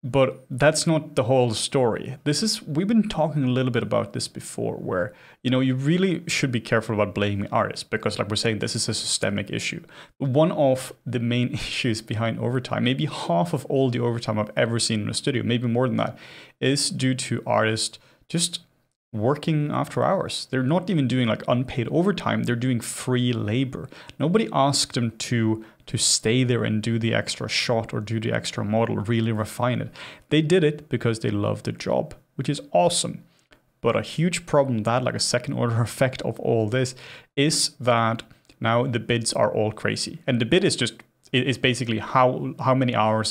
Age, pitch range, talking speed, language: 30-49, 110-140 Hz, 195 wpm, English